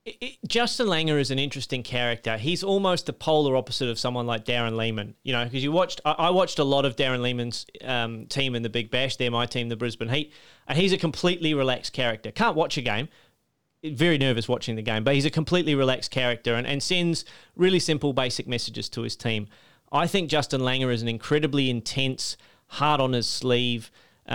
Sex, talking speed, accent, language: male, 200 wpm, Australian, English